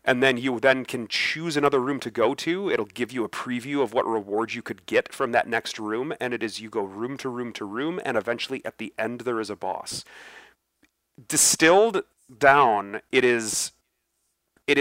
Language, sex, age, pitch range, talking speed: English, male, 30-49, 110-140 Hz, 205 wpm